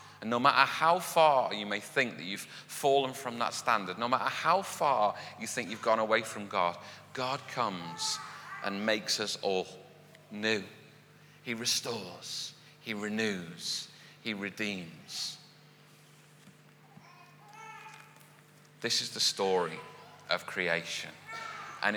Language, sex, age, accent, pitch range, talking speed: English, male, 30-49, British, 90-140 Hz, 125 wpm